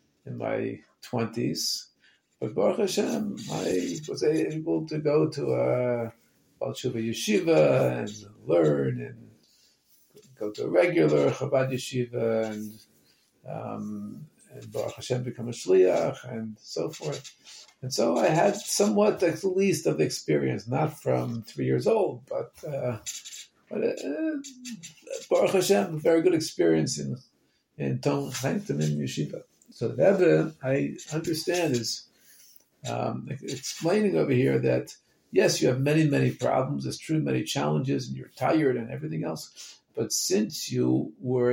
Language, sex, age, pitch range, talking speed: English, male, 50-69, 100-155 Hz, 135 wpm